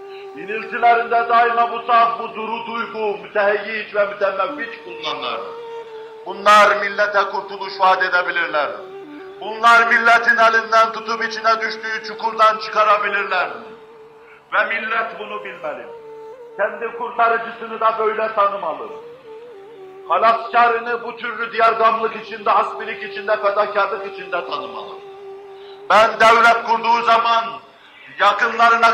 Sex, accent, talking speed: male, native, 100 wpm